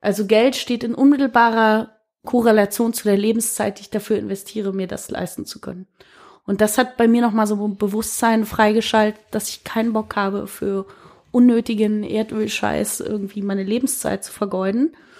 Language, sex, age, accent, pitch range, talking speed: German, female, 20-39, German, 215-255 Hz, 160 wpm